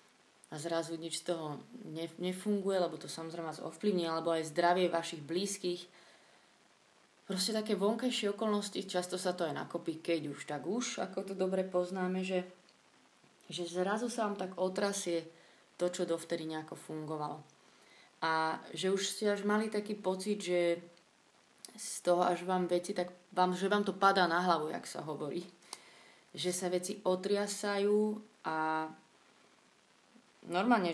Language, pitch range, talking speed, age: Slovak, 160-185 Hz, 145 wpm, 20-39